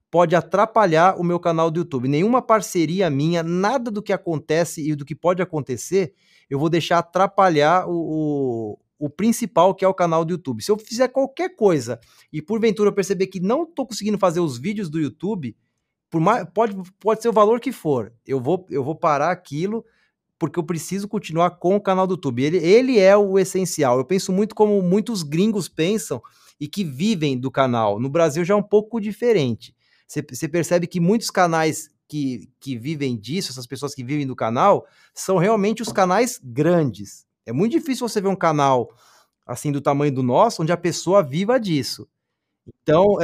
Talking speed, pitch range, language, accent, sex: 190 wpm, 150-205 Hz, Portuguese, Brazilian, male